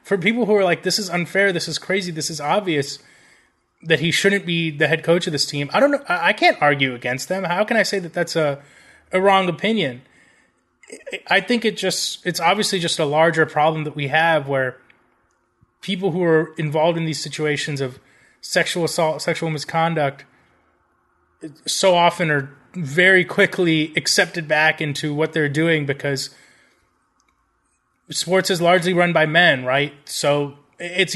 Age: 30-49